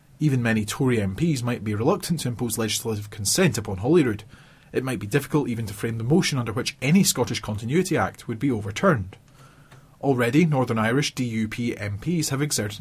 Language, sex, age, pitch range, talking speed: English, male, 30-49, 115-160 Hz, 180 wpm